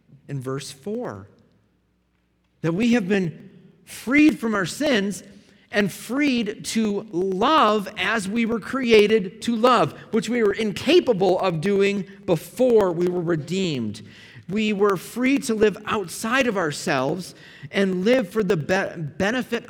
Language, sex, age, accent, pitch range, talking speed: English, male, 40-59, American, 130-200 Hz, 135 wpm